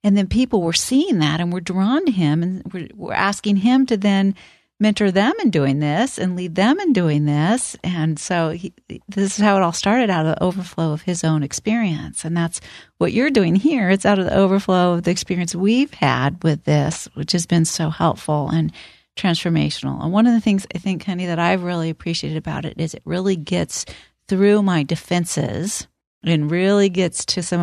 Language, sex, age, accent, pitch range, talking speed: English, female, 40-59, American, 160-210 Hz, 205 wpm